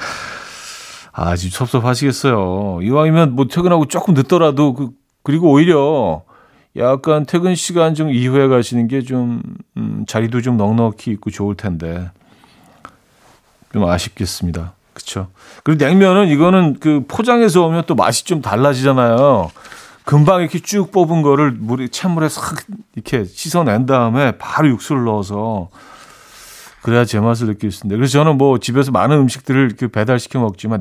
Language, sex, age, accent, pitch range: Korean, male, 40-59, native, 105-155 Hz